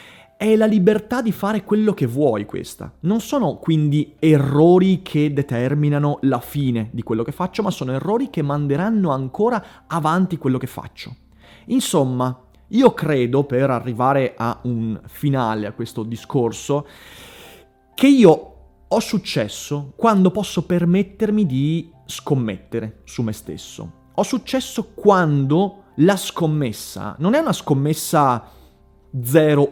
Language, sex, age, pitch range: Italian, male, 30-49, 125-195 Hz